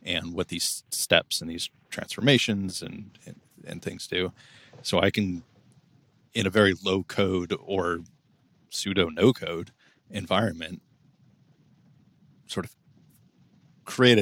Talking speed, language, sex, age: 120 wpm, English, male, 30-49